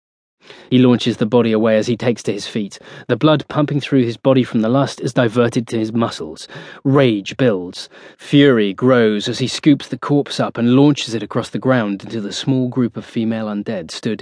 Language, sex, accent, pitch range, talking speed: English, male, British, 115-135 Hz, 205 wpm